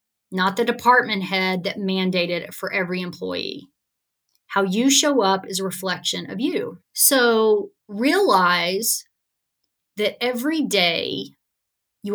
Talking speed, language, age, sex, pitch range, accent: 125 wpm, English, 30-49, female, 175-220 Hz, American